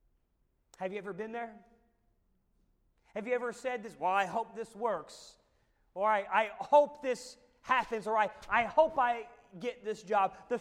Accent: American